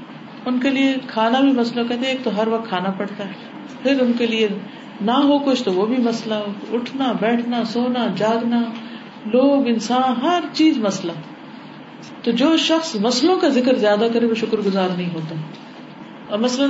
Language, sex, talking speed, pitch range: Urdu, female, 185 wpm, 225-275 Hz